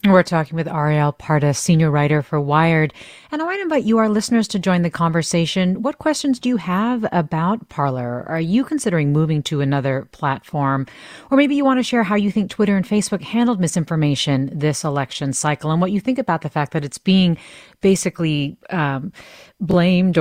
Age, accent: 30-49, American